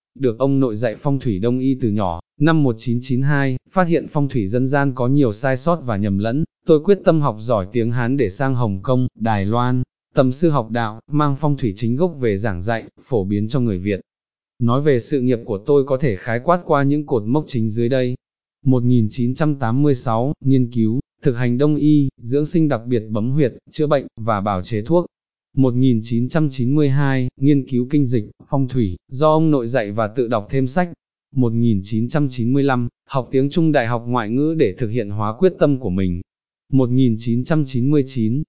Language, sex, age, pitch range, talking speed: Vietnamese, male, 20-39, 115-145 Hz, 195 wpm